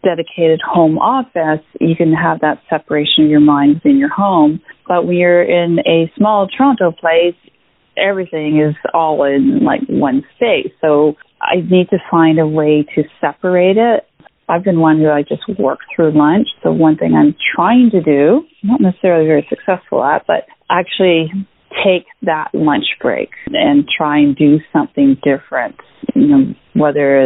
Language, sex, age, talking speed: English, female, 30-49, 160 wpm